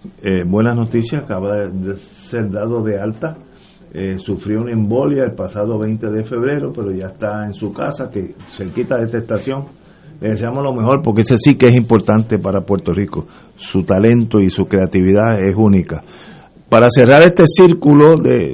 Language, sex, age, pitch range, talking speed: Spanish, male, 50-69, 110-155 Hz, 180 wpm